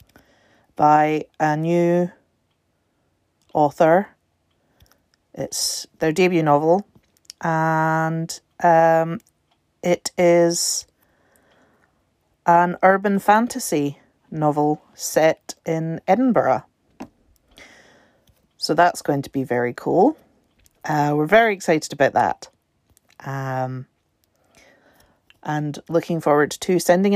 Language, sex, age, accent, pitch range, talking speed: English, female, 40-59, British, 140-175 Hz, 85 wpm